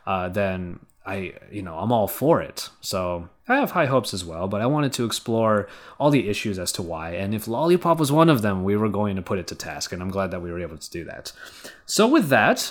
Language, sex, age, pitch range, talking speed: English, male, 20-39, 105-150 Hz, 260 wpm